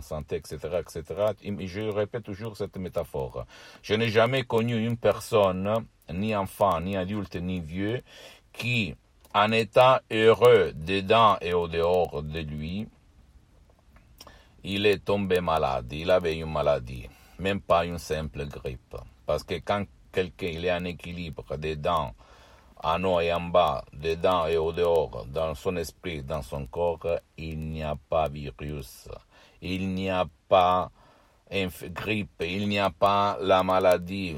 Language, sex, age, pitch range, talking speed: Italian, male, 60-79, 85-105 Hz, 145 wpm